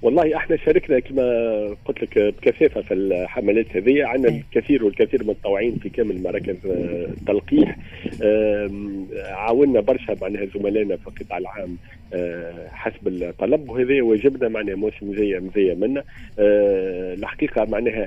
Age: 40-59